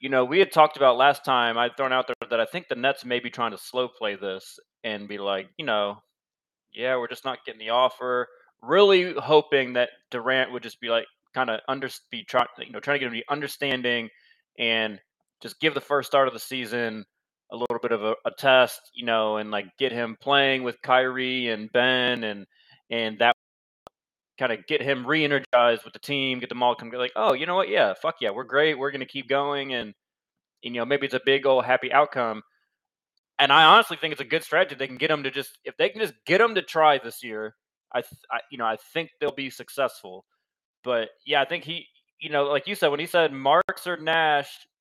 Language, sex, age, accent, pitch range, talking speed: English, male, 20-39, American, 120-145 Hz, 230 wpm